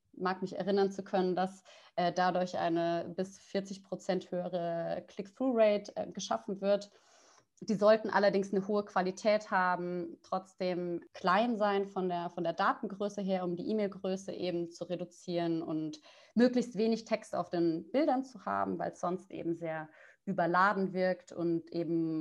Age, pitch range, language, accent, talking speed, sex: 30-49, 170-195 Hz, German, German, 155 wpm, female